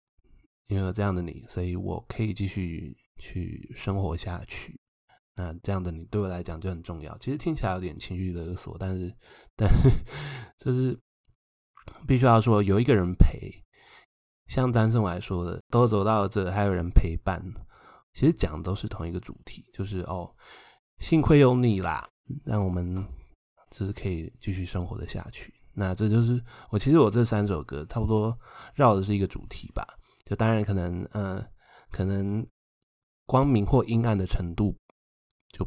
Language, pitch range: Chinese, 90-115 Hz